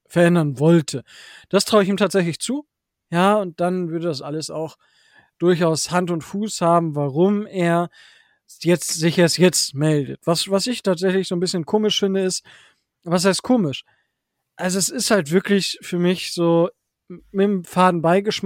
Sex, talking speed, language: male, 165 wpm, German